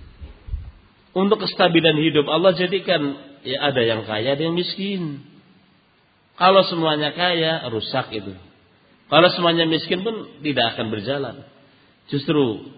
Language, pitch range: Indonesian, 105-145 Hz